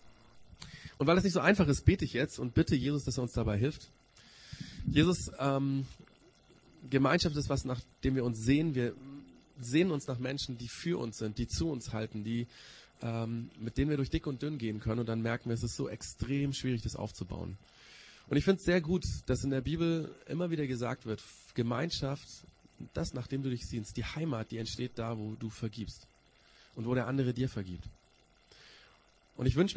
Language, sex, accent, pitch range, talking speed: German, male, German, 115-140 Hz, 200 wpm